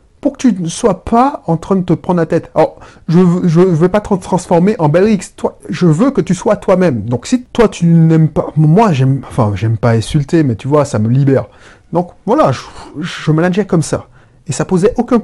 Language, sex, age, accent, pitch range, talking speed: French, male, 30-49, French, 140-200 Hz, 225 wpm